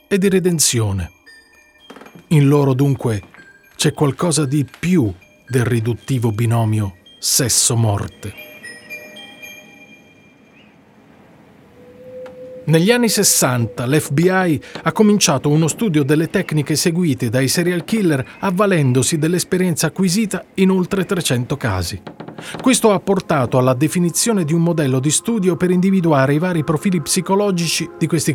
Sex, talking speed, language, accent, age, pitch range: male, 110 wpm, Italian, native, 40-59, 130-180 Hz